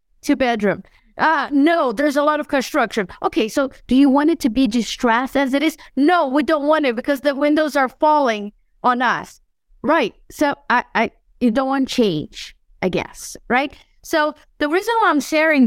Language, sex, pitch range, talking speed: English, female, 200-270 Hz, 190 wpm